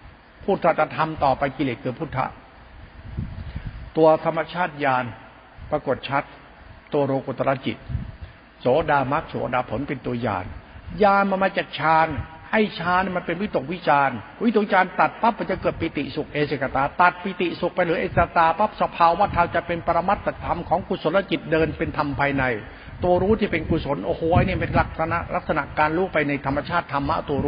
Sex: male